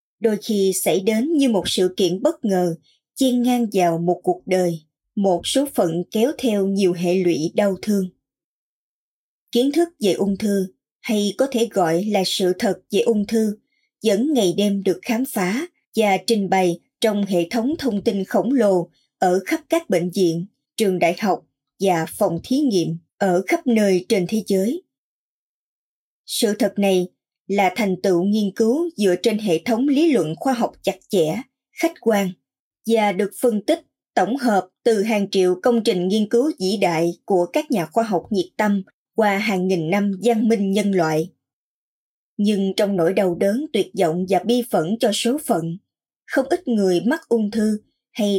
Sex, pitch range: male, 180-235 Hz